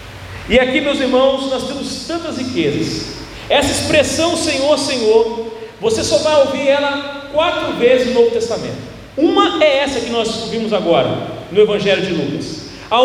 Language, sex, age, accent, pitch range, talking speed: Portuguese, male, 40-59, Brazilian, 200-295 Hz, 155 wpm